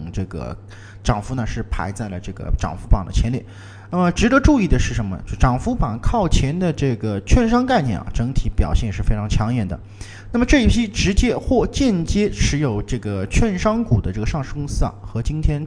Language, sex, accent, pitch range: Chinese, male, native, 100-135 Hz